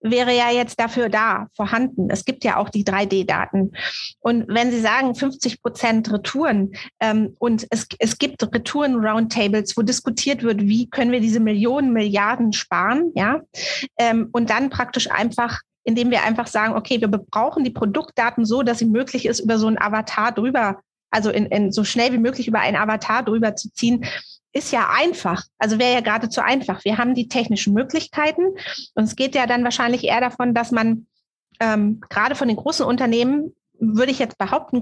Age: 30-49